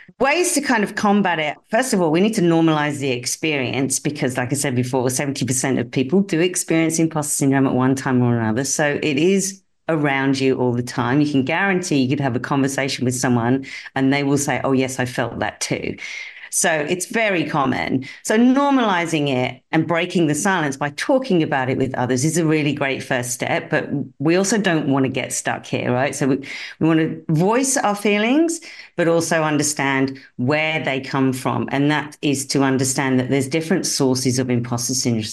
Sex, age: female, 50-69